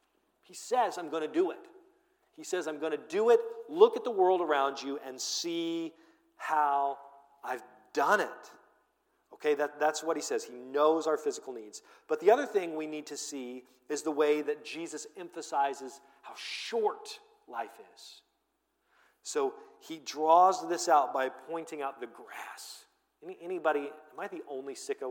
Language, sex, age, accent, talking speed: English, male, 40-59, American, 165 wpm